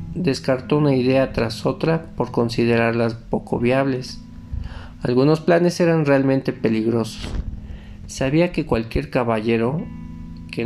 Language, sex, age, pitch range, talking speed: Spanish, male, 50-69, 110-135 Hz, 105 wpm